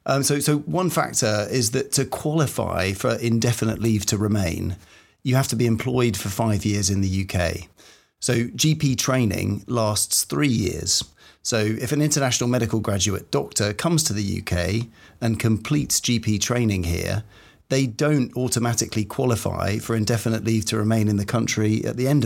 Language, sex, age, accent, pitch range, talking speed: English, male, 40-59, British, 105-125 Hz, 165 wpm